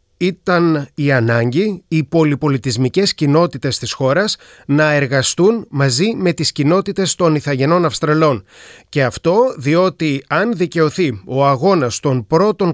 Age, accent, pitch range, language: 30-49, native, 140-180 Hz, Greek